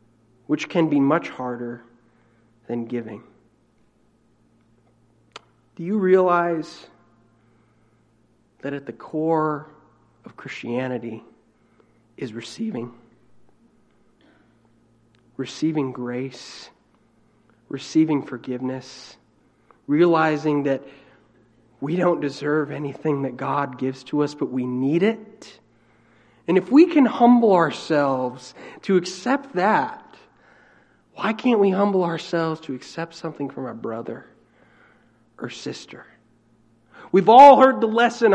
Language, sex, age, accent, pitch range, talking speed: English, male, 40-59, American, 115-165 Hz, 100 wpm